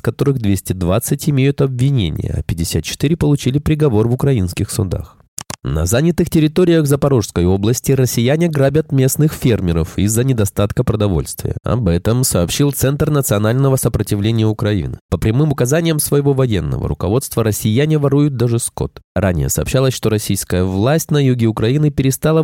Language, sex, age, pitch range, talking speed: Russian, male, 20-39, 100-140 Hz, 130 wpm